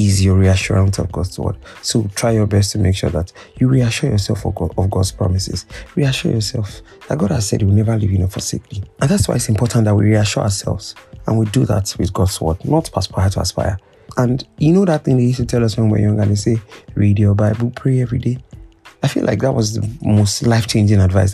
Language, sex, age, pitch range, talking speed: English, male, 20-39, 100-130 Hz, 240 wpm